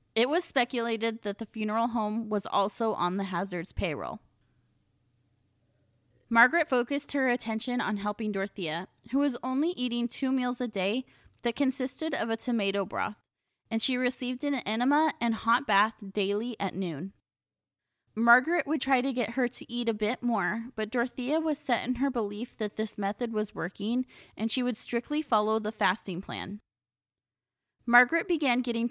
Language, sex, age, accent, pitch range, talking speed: English, female, 20-39, American, 195-245 Hz, 165 wpm